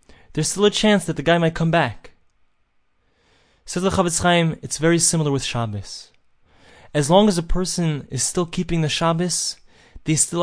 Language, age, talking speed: English, 20-39, 175 wpm